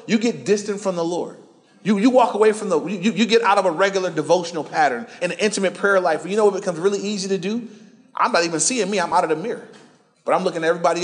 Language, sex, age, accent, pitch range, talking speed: English, male, 30-49, American, 165-205 Hz, 265 wpm